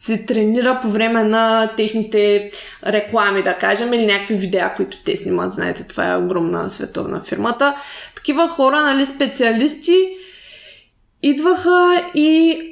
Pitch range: 210-265 Hz